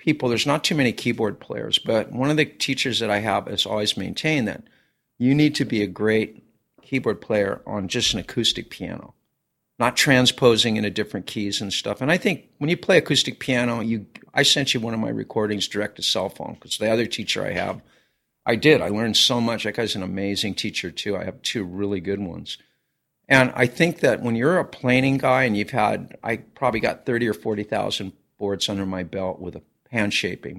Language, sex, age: English, male, 50-69